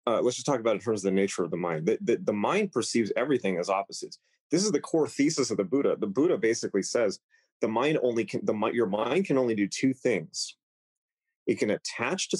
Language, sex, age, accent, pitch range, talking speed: English, male, 30-49, American, 95-135 Hz, 240 wpm